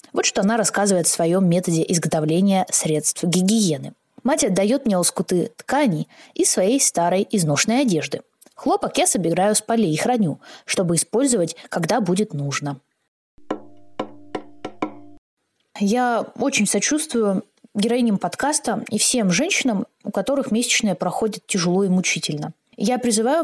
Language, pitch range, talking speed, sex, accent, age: Russian, 170-230 Hz, 125 wpm, female, native, 20-39